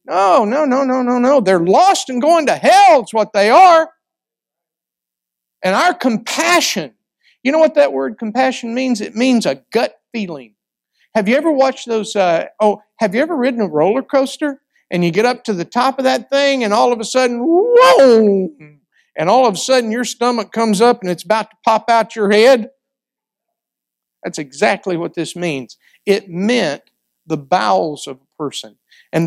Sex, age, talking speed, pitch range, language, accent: male, 50-69, 185 wpm, 175-255 Hz, English, American